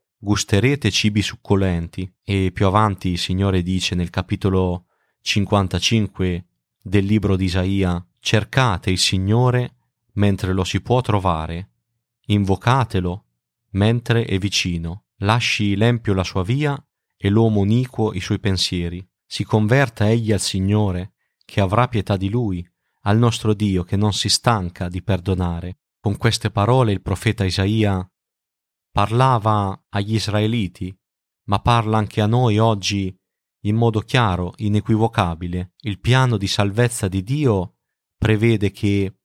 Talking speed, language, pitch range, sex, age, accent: 130 wpm, Italian, 95-115 Hz, male, 30-49, native